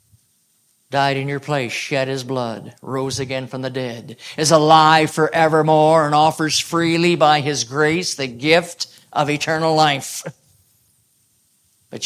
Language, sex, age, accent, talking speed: English, male, 50-69, American, 135 wpm